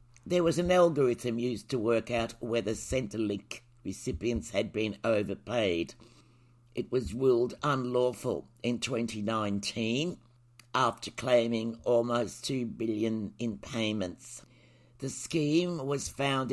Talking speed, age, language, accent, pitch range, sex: 115 wpm, 60-79, English, British, 110-130 Hz, male